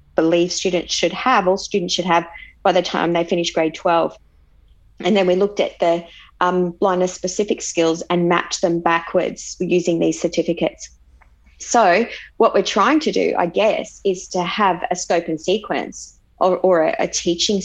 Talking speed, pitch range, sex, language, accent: 175 wpm, 170-190 Hz, female, English, Australian